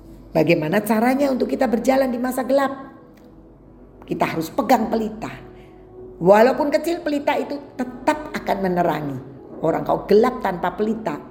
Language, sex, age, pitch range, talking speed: Indonesian, female, 40-59, 175-260 Hz, 125 wpm